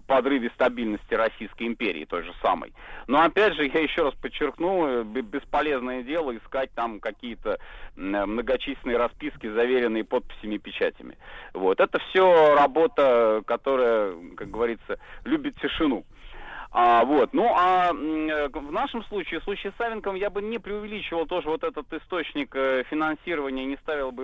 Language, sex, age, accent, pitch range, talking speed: Russian, male, 30-49, native, 125-175 Hz, 140 wpm